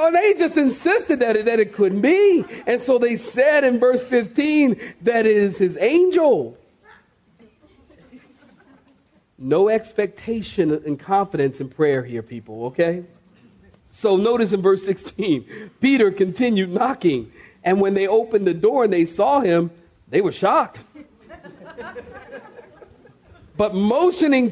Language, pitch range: English, 165-240 Hz